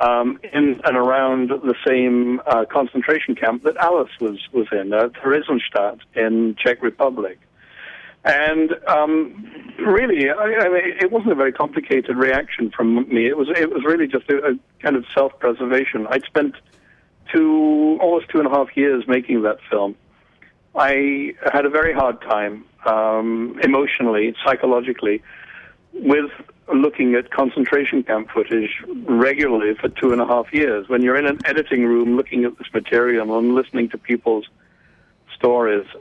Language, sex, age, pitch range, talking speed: English, male, 60-79, 115-145 Hz, 155 wpm